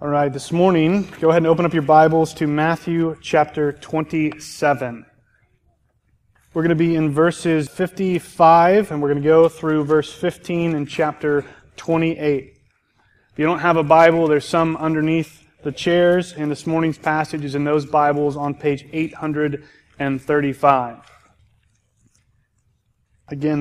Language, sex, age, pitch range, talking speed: English, male, 30-49, 150-175 Hz, 140 wpm